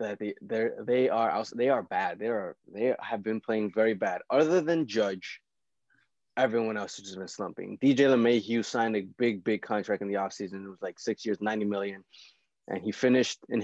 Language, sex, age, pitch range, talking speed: English, male, 20-39, 100-125 Hz, 205 wpm